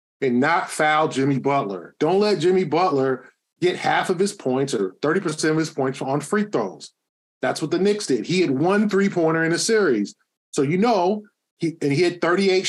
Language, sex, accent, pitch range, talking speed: English, male, American, 140-180 Hz, 200 wpm